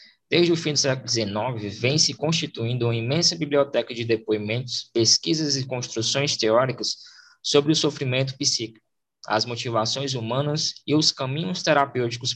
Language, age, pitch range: Portuguese, 20-39, 115-150 Hz